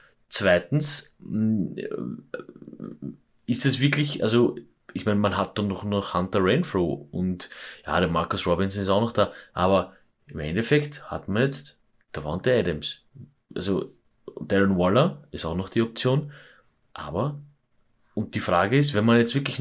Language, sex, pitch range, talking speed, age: German, male, 95-130 Hz, 145 wpm, 30-49